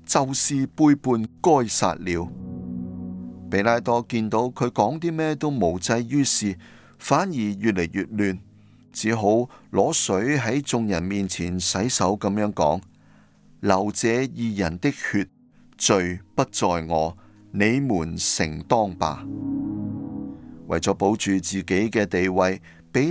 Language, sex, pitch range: Chinese, male, 95-125 Hz